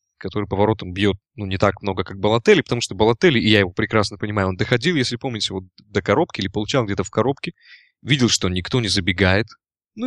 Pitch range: 95-120 Hz